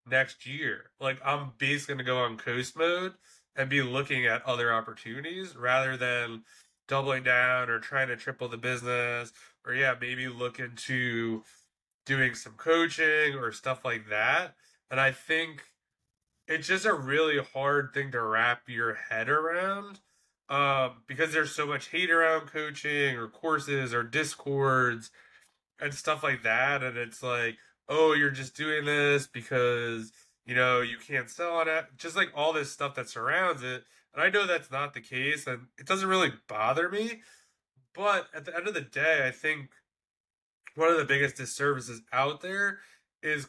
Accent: American